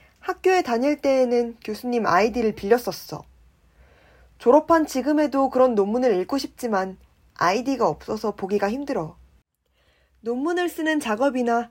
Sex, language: female, Korean